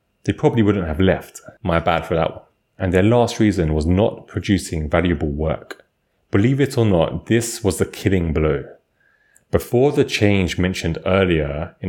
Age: 30-49